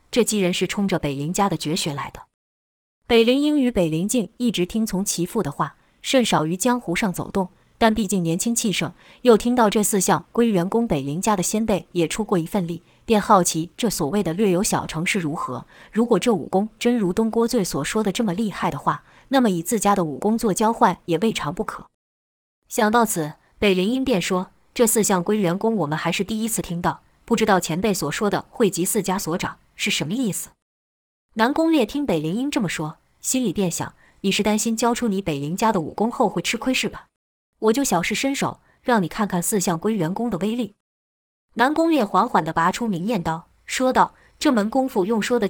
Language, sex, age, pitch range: Chinese, female, 20-39, 175-230 Hz